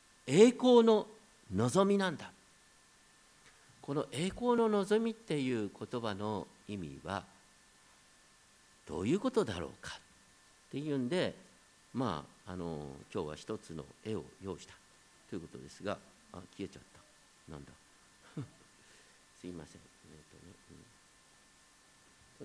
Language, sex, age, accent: Japanese, male, 50-69, native